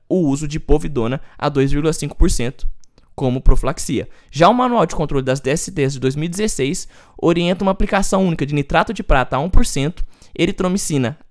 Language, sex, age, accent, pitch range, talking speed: Portuguese, male, 20-39, Brazilian, 135-210 Hz, 150 wpm